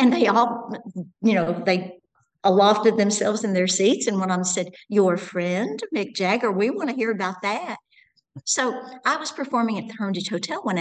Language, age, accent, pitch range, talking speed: English, 60-79, American, 190-235 Hz, 195 wpm